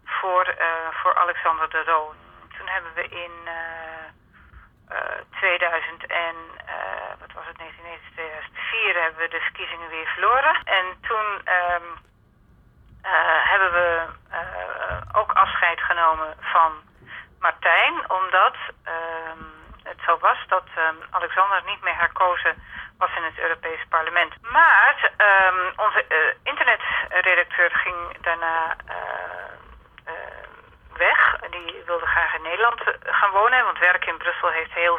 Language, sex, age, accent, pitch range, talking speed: Dutch, female, 40-59, Dutch, 165-200 Hz, 130 wpm